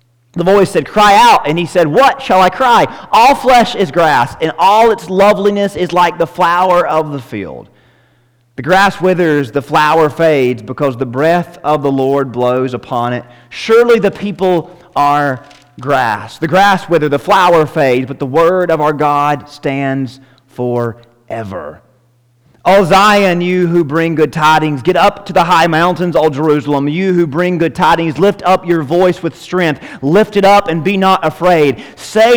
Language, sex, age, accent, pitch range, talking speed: English, male, 30-49, American, 130-190 Hz, 175 wpm